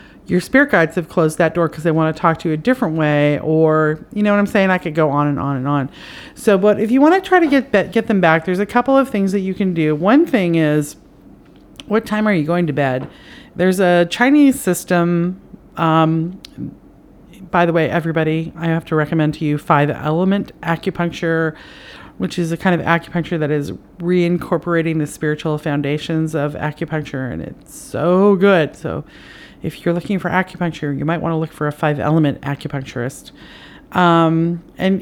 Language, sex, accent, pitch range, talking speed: English, female, American, 155-200 Hz, 200 wpm